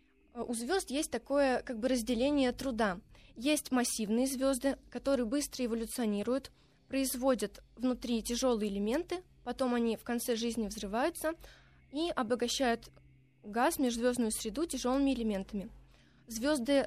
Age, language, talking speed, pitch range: 20-39, Russian, 105 wpm, 230-270 Hz